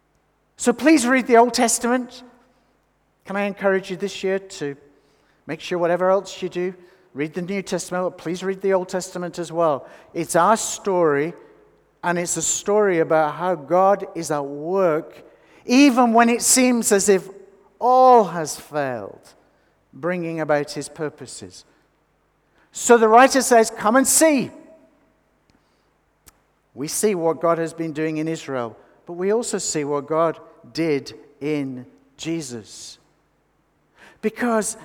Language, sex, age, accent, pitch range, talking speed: English, male, 50-69, British, 150-205 Hz, 145 wpm